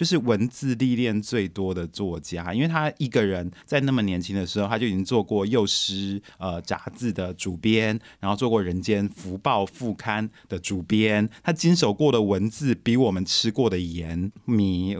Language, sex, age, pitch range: Chinese, male, 20-39, 100-135 Hz